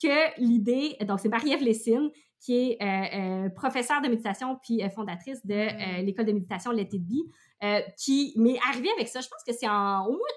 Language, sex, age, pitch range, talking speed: French, female, 20-39, 210-280 Hz, 215 wpm